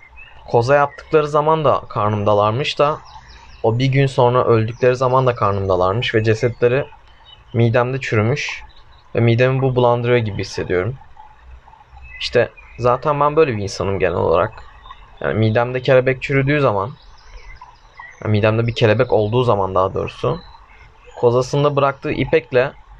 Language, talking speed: Turkish, 125 wpm